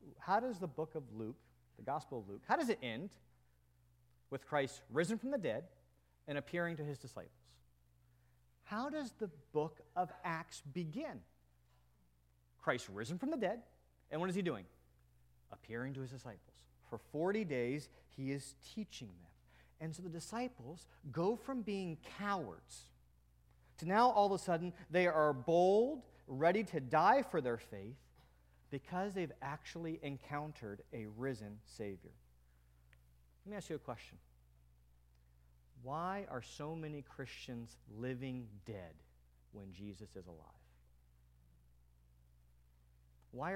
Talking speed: 140 wpm